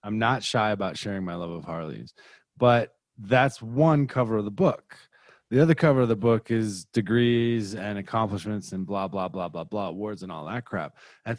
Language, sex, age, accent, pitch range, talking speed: English, male, 20-39, American, 105-135 Hz, 200 wpm